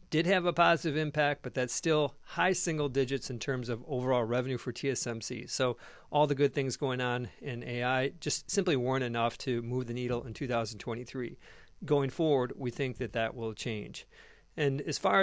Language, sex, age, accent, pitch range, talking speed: English, male, 40-59, American, 125-150 Hz, 190 wpm